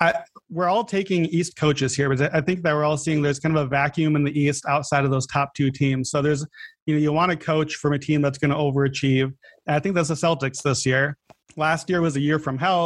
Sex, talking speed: male, 270 wpm